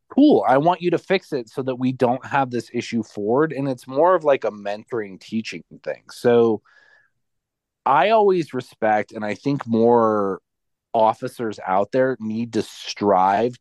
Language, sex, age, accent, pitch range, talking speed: English, male, 30-49, American, 105-130 Hz, 170 wpm